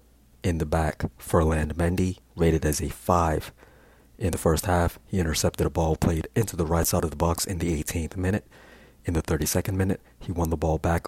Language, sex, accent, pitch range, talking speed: English, male, American, 80-95 Hz, 205 wpm